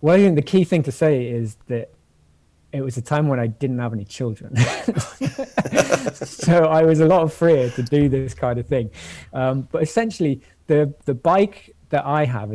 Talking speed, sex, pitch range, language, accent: 195 wpm, male, 115-140 Hz, English, British